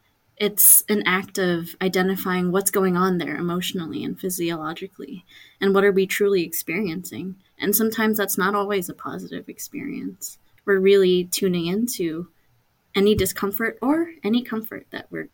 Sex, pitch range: female, 175-200 Hz